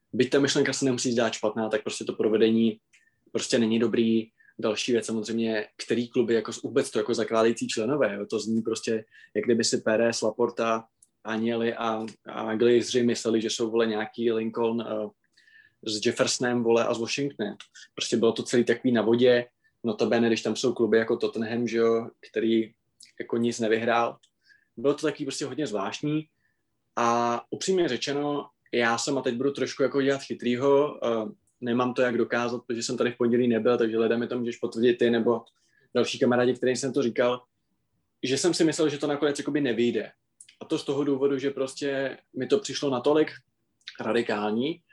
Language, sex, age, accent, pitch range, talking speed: Czech, male, 20-39, native, 115-130 Hz, 175 wpm